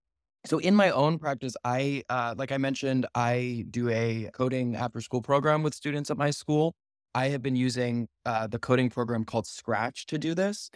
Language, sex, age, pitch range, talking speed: English, male, 20-39, 115-135 Hz, 200 wpm